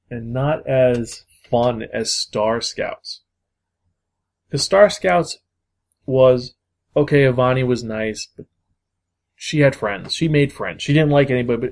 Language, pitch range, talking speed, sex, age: English, 105-135 Hz, 140 wpm, male, 20-39